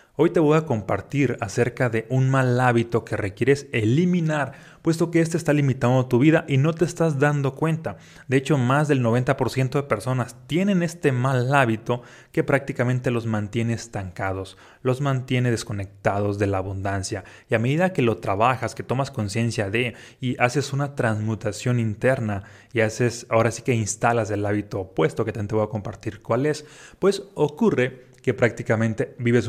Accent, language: Mexican, Spanish